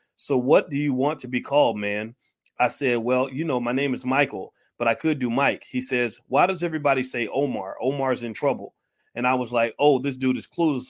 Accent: American